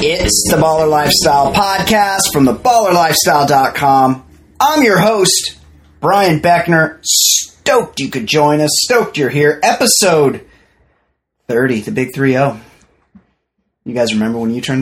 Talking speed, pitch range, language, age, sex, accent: 130 wpm, 120-165 Hz, English, 30-49, male, American